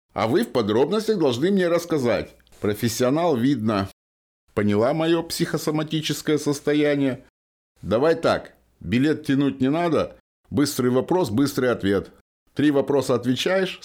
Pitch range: 105-145 Hz